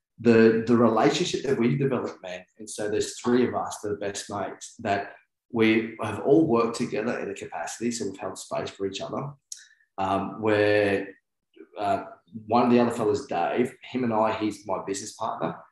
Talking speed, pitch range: 185 wpm, 105-120 Hz